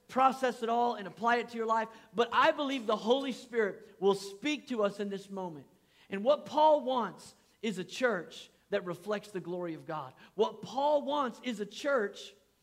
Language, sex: English, male